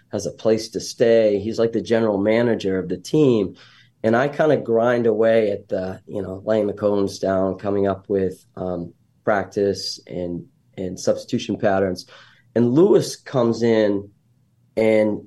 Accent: American